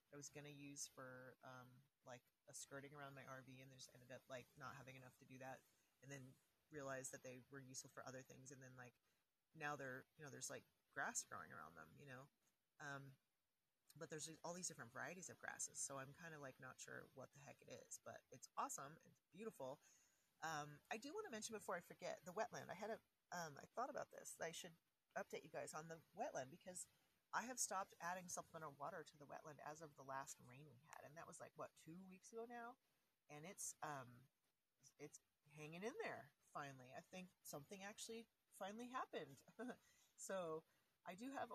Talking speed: 210 wpm